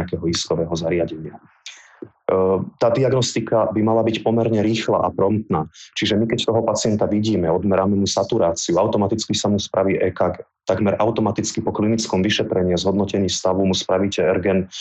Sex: male